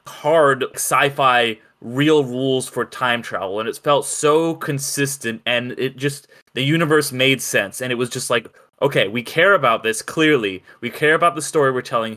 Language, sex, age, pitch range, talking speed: English, male, 20-39, 120-145 Hz, 185 wpm